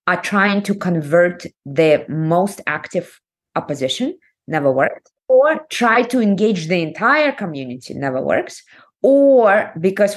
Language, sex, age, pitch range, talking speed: English, female, 20-39, 155-200 Hz, 125 wpm